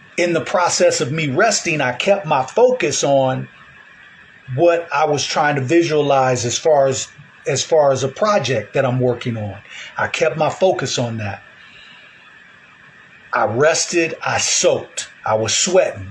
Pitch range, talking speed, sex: 130-160 Hz, 155 wpm, male